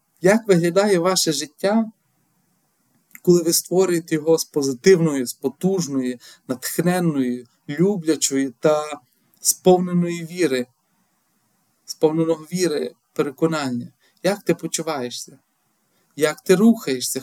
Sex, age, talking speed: male, 40-59, 85 wpm